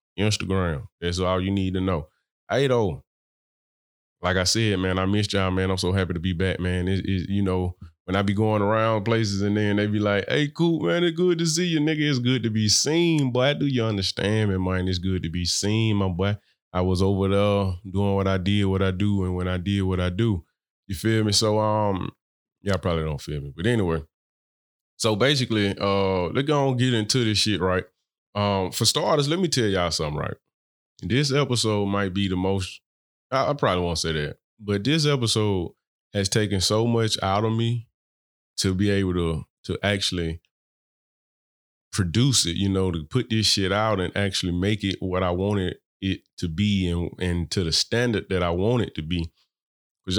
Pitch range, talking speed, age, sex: 90-110 Hz, 210 wpm, 20-39, male